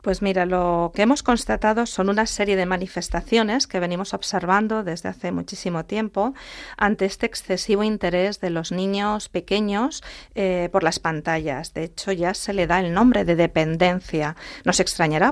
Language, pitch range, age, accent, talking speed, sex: Spanish, 170-215 Hz, 40-59, Spanish, 170 wpm, female